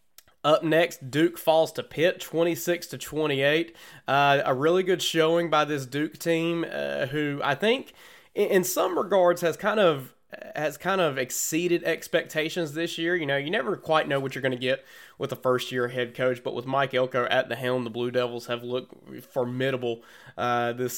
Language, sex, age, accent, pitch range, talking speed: English, male, 20-39, American, 130-155 Hz, 190 wpm